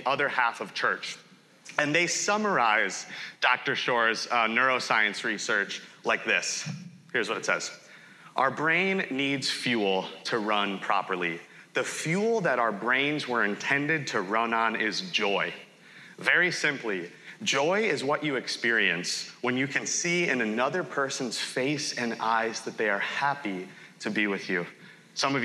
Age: 30-49